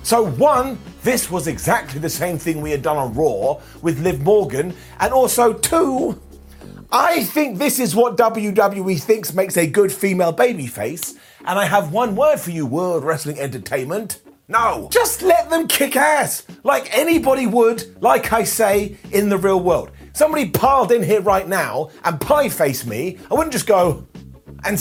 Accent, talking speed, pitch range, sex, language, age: British, 175 wpm, 155-235 Hz, male, English, 30-49